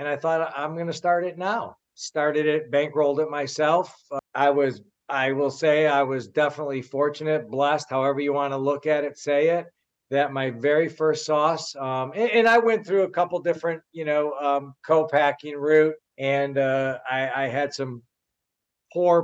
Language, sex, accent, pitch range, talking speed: English, male, American, 135-155 Hz, 185 wpm